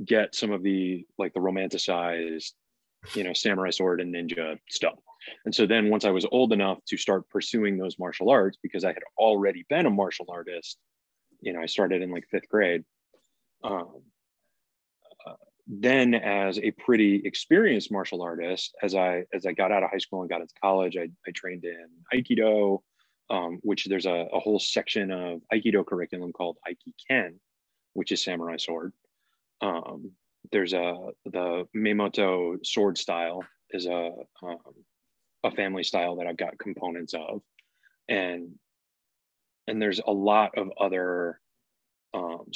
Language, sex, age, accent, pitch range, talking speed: English, male, 20-39, American, 90-110 Hz, 160 wpm